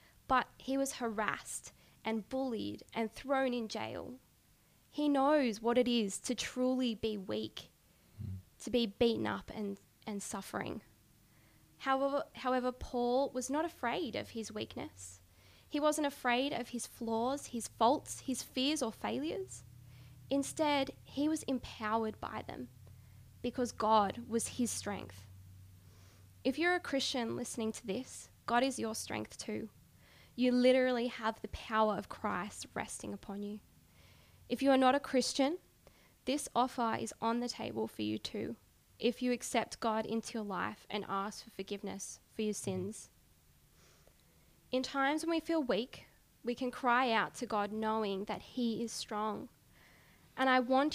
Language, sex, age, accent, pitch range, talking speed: English, female, 10-29, Australian, 205-255 Hz, 150 wpm